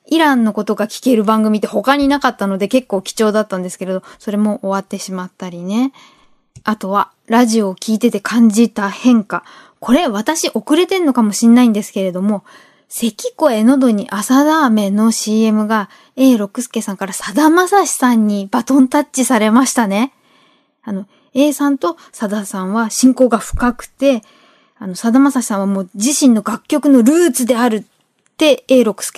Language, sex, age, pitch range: Japanese, female, 20-39, 210-275 Hz